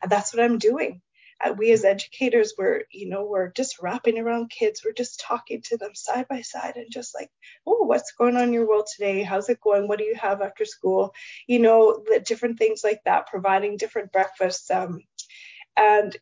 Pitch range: 205-260 Hz